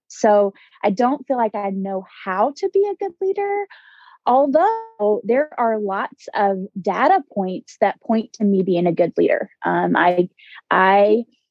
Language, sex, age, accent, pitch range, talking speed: English, female, 20-39, American, 190-245 Hz, 160 wpm